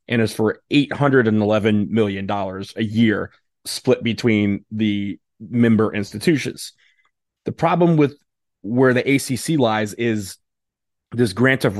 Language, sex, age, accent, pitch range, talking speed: English, male, 20-39, American, 110-125 Hz, 115 wpm